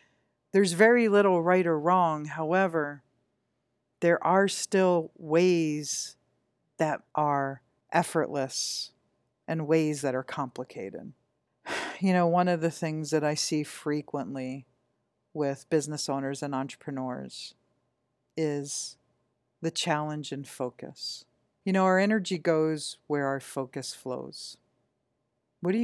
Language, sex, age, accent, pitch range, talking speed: English, female, 50-69, American, 140-185 Hz, 115 wpm